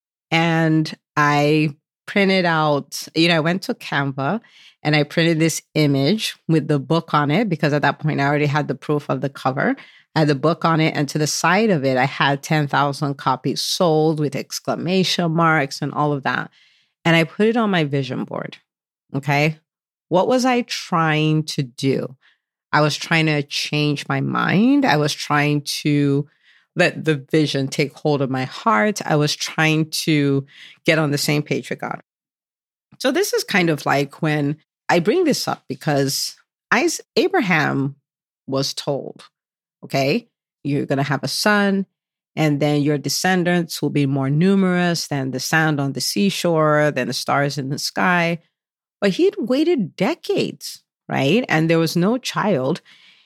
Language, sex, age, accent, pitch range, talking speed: English, female, 40-59, American, 145-175 Hz, 170 wpm